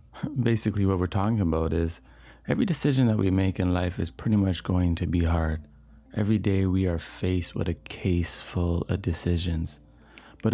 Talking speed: 180 wpm